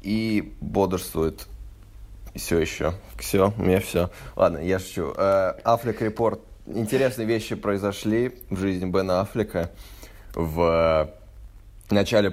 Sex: male